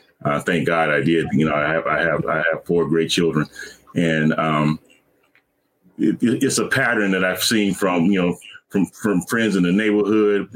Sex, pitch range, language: male, 85-105 Hz, English